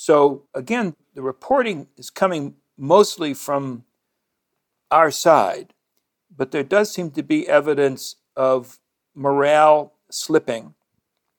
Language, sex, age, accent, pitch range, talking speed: English, male, 60-79, American, 135-180 Hz, 105 wpm